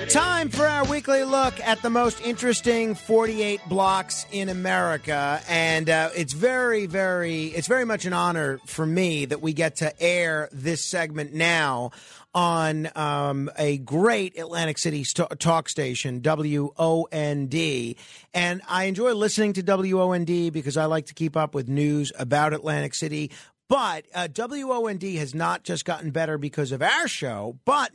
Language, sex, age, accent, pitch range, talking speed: English, male, 40-59, American, 155-210 Hz, 155 wpm